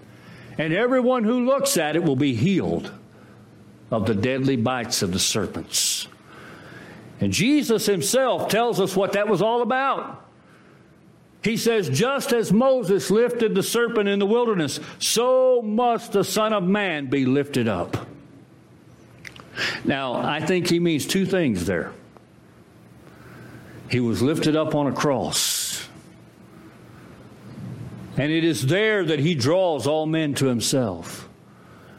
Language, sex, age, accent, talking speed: English, male, 60-79, American, 135 wpm